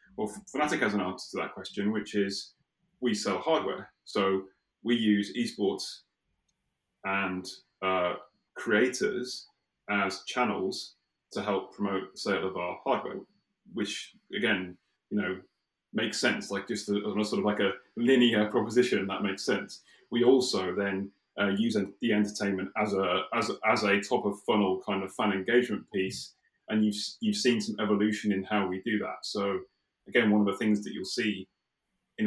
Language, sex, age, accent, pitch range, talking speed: English, male, 30-49, British, 95-110 Hz, 170 wpm